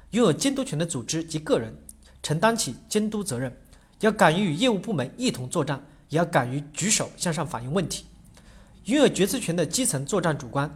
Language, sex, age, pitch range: Chinese, male, 40-59, 140-210 Hz